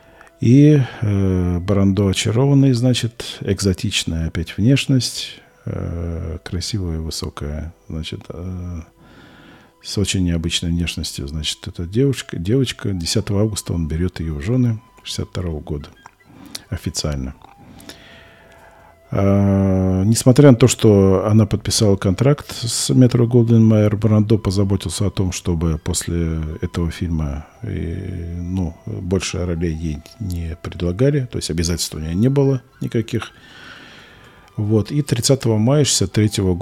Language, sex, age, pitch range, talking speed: Russian, male, 40-59, 85-115 Hz, 115 wpm